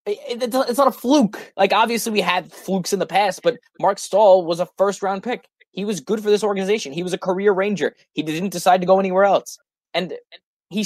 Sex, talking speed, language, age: male, 220 wpm, English, 20-39